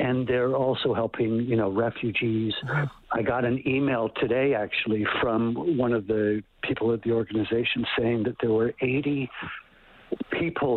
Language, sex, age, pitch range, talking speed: English, male, 60-79, 105-120 Hz, 150 wpm